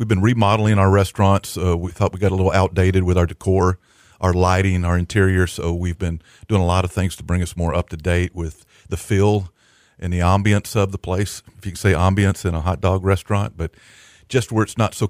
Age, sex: 50-69, male